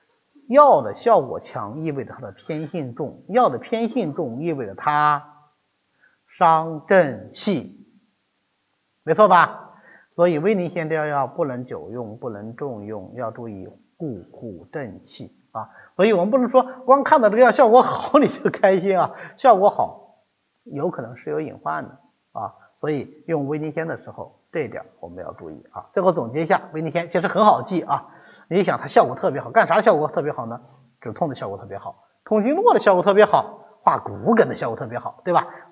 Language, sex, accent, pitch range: Chinese, male, native, 135-205 Hz